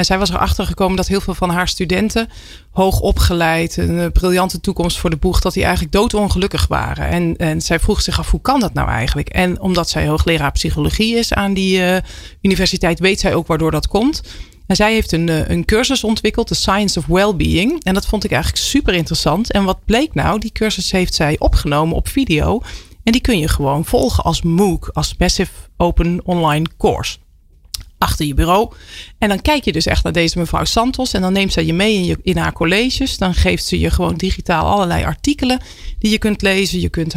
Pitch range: 160-205 Hz